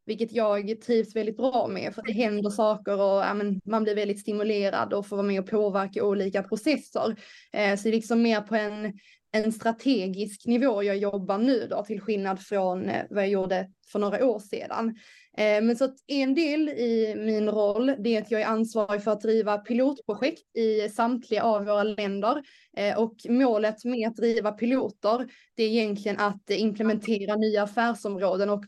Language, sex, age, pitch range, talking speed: Swedish, female, 20-39, 205-235 Hz, 180 wpm